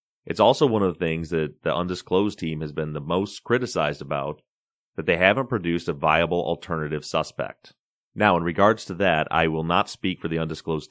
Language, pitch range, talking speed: English, 75-90 Hz, 200 wpm